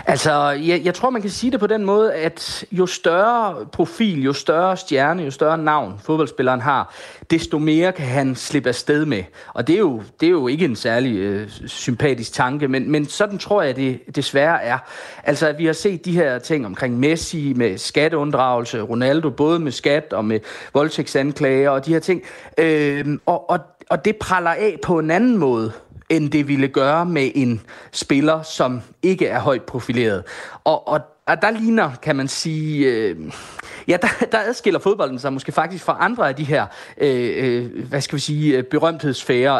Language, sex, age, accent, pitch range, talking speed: Danish, male, 30-49, native, 135-175 Hz, 185 wpm